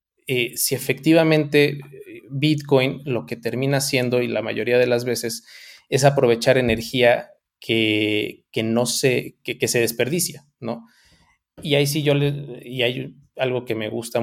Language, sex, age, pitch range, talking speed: Spanish, male, 20-39, 115-145 Hz, 155 wpm